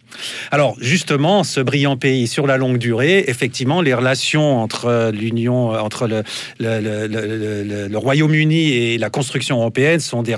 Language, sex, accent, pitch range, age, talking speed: French, male, French, 115-145 Hz, 40-59, 160 wpm